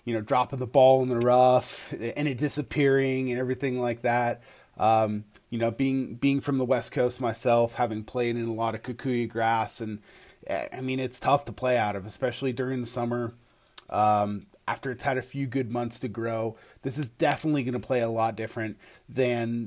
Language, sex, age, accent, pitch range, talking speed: English, male, 30-49, American, 115-135 Hz, 200 wpm